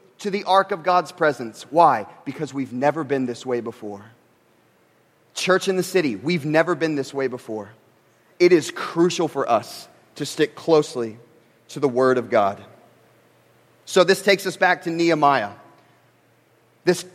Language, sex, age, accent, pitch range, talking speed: English, male, 30-49, American, 135-190 Hz, 160 wpm